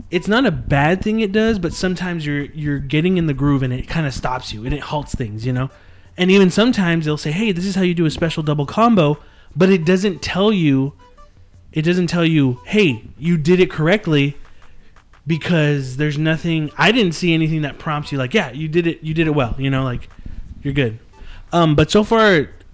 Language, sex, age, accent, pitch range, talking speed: English, male, 20-39, American, 135-185 Hz, 220 wpm